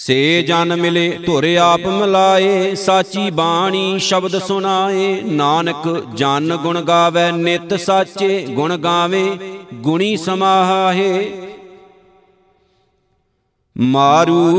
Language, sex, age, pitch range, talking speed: Punjabi, male, 50-69, 170-190 Hz, 85 wpm